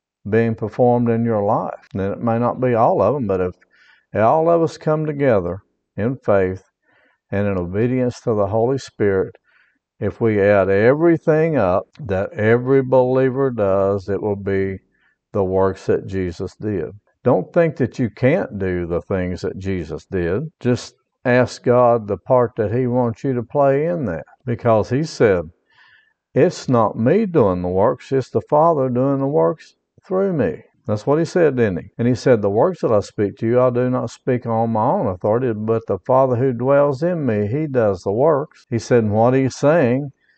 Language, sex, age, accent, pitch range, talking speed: English, male, 60-79, American, 100-130 Hz, 190 wpm